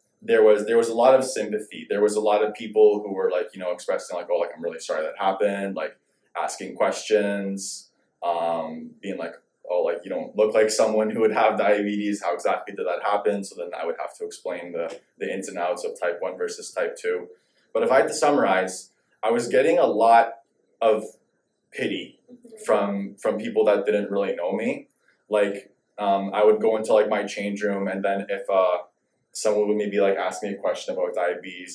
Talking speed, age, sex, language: 215 wpm, 20-39, male, English